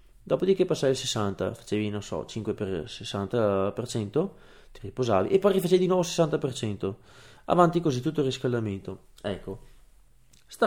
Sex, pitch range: male, 110-135 Hz